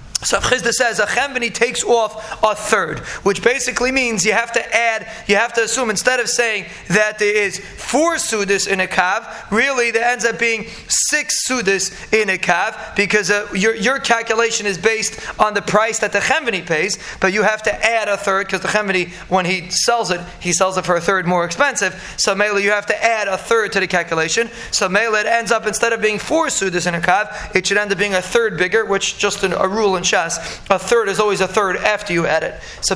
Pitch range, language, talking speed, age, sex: 190-230 Hz, English, 230 wpm, 30-49, male